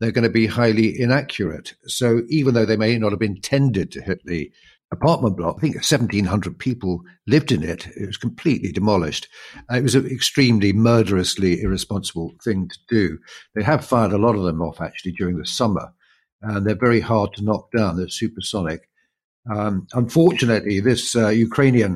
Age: 60-79